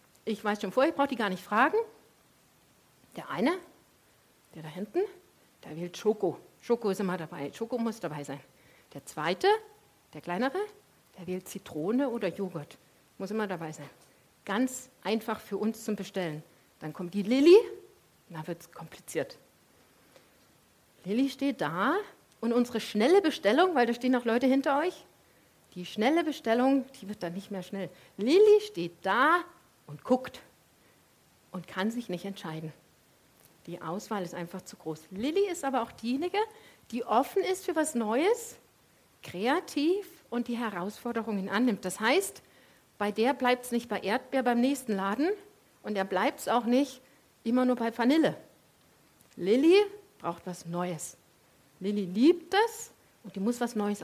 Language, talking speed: German, 160 wpm